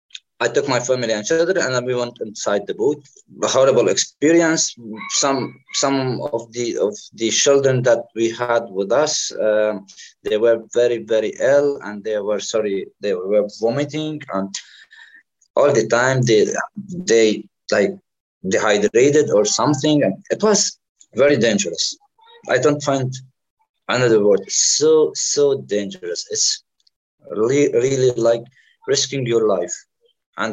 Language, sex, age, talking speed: English, male, 20-39, 145 wpm